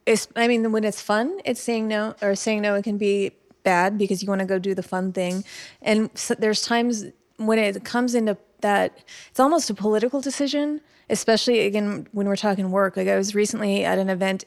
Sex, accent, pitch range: female, American, 195-225 Hz